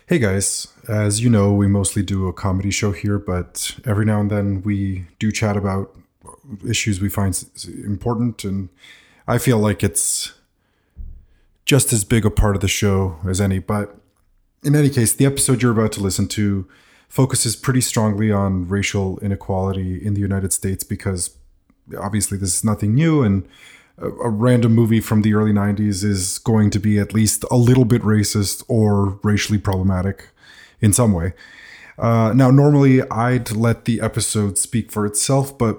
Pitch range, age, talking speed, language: 95-115 Hz, 30-49, 170 wpm, English